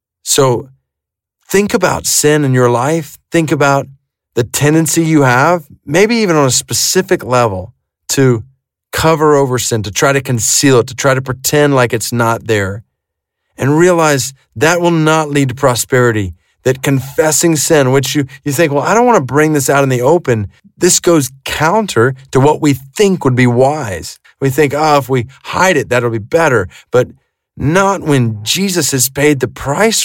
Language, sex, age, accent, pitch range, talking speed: English, male, 40-59, American, 125-160 Hz, 180 wpm